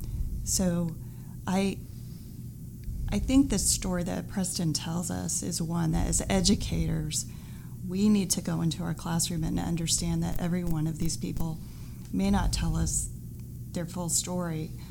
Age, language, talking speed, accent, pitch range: 30-49, English, 150 wpm, American, 155-175 Hz